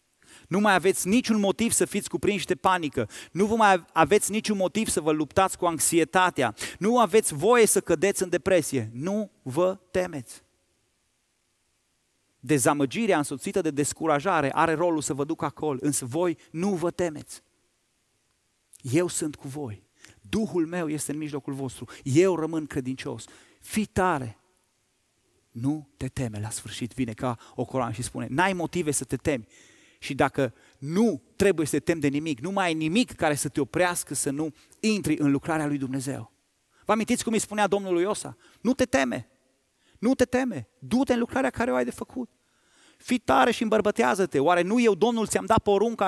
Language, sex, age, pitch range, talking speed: Romanian, male, 30-49, 135-195 Hz, 175 wpm